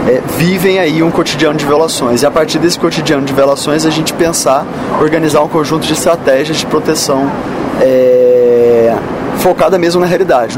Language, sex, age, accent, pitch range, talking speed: Portuguese, male, 20-39, Brazilian, 140-180 Hz, 165 wpm